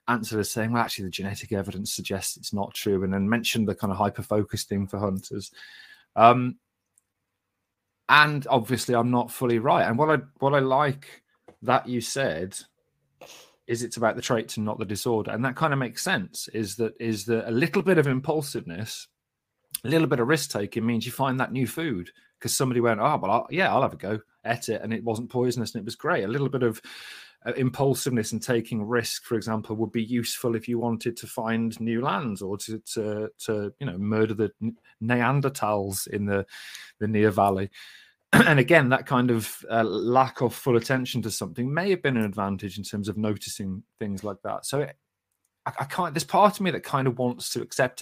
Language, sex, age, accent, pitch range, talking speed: English, male, 30-49, British, 105-130 Hz, 210 wpm